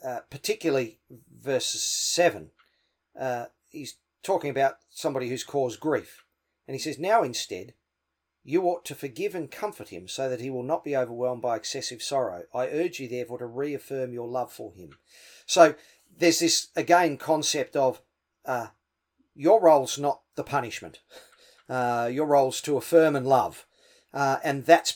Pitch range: 135-170 Hz